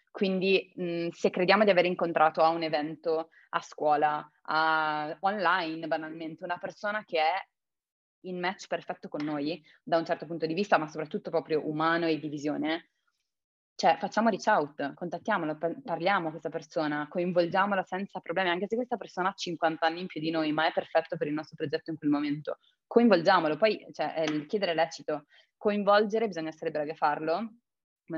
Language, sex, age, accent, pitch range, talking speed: Italian, female, 20-39, native, 155-190 Hz, 180 wpm